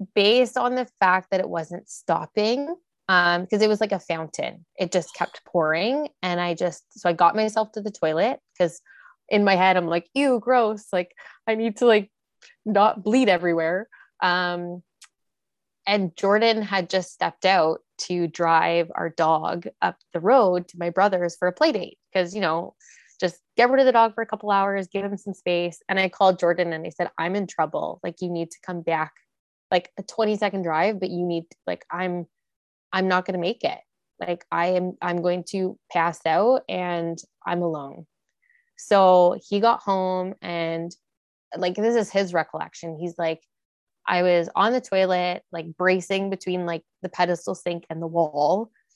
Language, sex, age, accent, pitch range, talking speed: English, female, 20-39, American, 170-210 Hz, 190 wpm